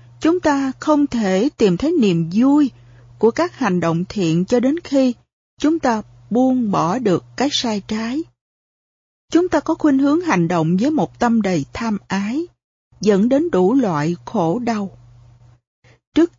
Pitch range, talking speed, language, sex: 165-255 Hz, 160 wpm, Vietnamese, female